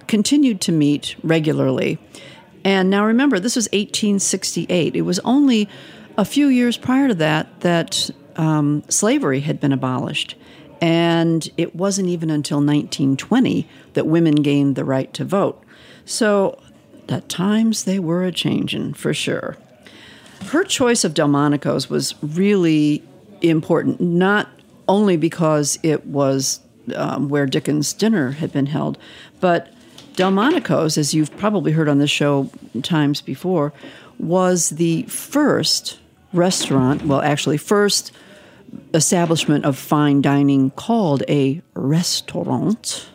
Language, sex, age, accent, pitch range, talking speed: English, female, 50-69, American, 145-195 Hz, 125 wpm